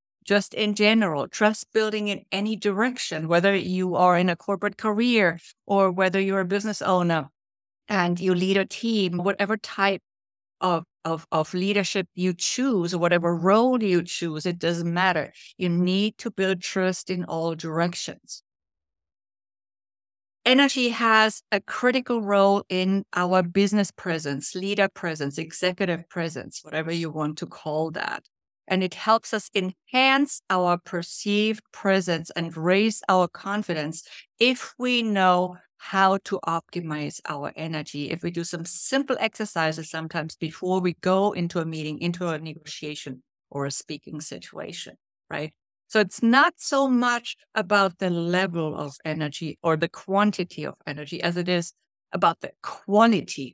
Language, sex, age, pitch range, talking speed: English, female, 50-69, 160-205 Hz, 145 wpm